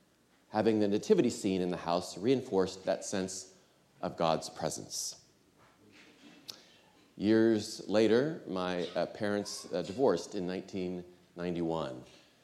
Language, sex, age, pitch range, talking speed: English, male, 40-59, 90-115 Hz, 95 wpm